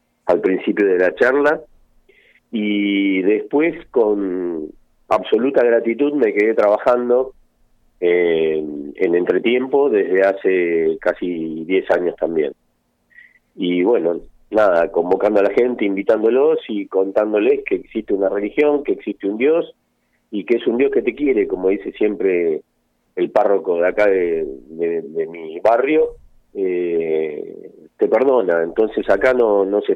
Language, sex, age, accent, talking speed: Spanish, male, 40-59, Argentinian, 135 wpm